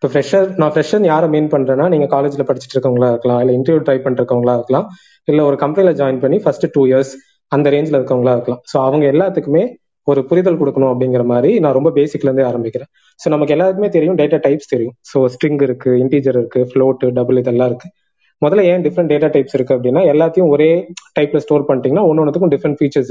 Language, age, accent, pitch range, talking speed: Tamil, 20-39, native, 130-160 Hz, 190 wpm